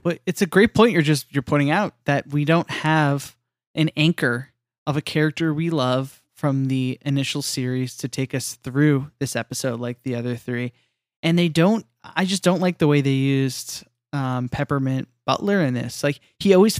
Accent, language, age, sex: American, English, 10-29, male